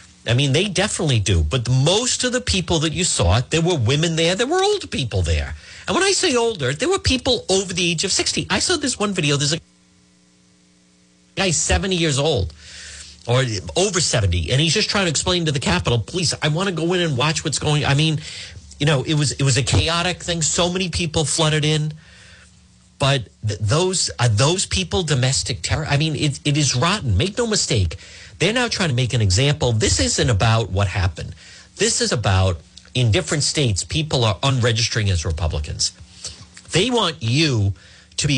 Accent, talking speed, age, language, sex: American, 205 wpm, 50-69, English, male